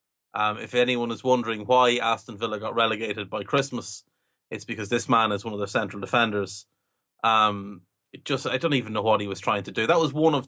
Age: 30-49